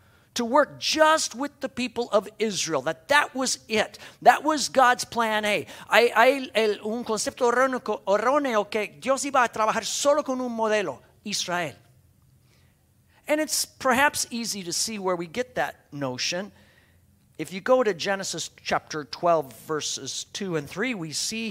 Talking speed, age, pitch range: 145 wpm, 50-69, 175-240 Hz